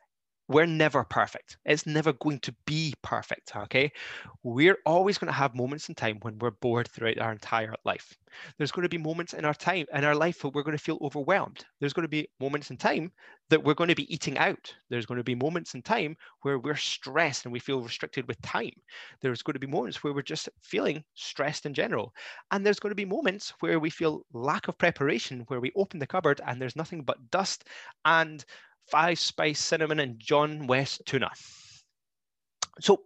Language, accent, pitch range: English, British, 125-160 Hz